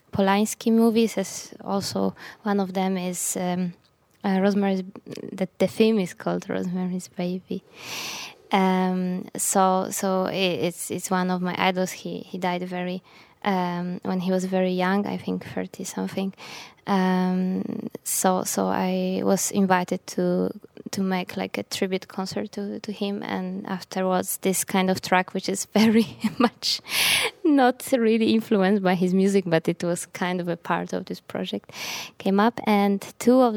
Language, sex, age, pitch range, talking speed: English, female, 20-39, 185-200 Hz, 160 wpm